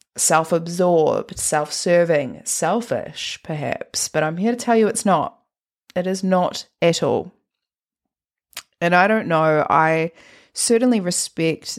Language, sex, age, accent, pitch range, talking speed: English, female, 20-39, Australian, 150-175 Hz, 120 wpm